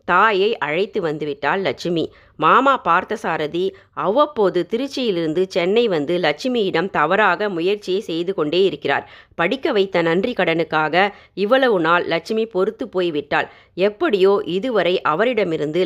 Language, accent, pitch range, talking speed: Tamil, native, 180-245 Hz, 105 wpm